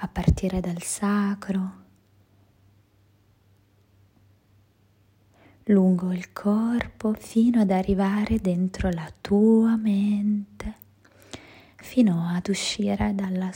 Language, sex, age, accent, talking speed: Italian, female, 20-39, native, 80 wpm